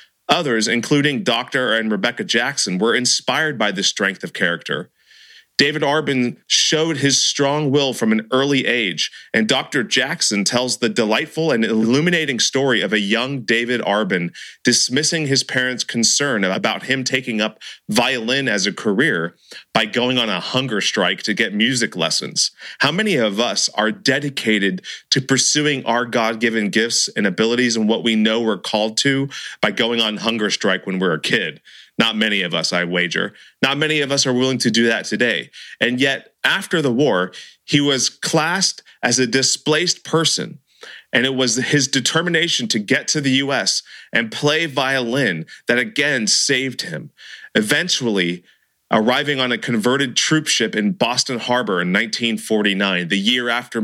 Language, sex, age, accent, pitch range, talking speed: English, male, 30-49, American, 110-140 Hz, 165 wpm